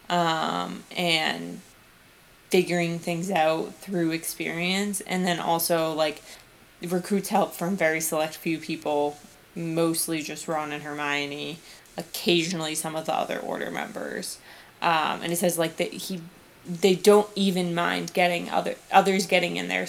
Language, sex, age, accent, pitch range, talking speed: English, female, 20-39, American, 170-200 Hz, 140 wpm